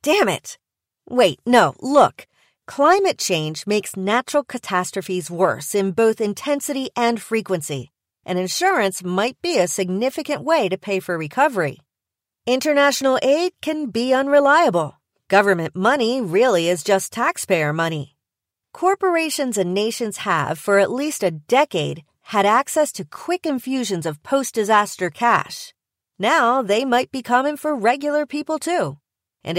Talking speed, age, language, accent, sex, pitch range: 135 wpm, 40-59, English, American, female, 185-265 Hz